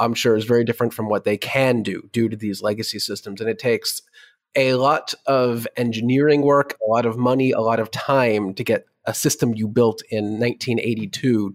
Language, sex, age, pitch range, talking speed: English, male, 30-49, 110-135 Hz, 205 wpm